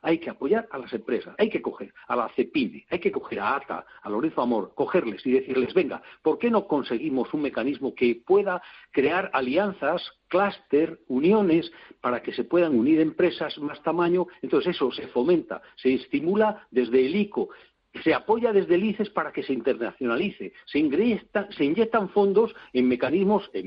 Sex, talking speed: male, 170 wpm